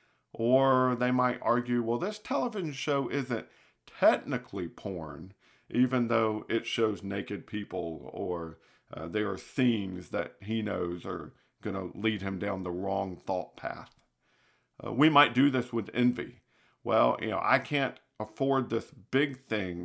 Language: English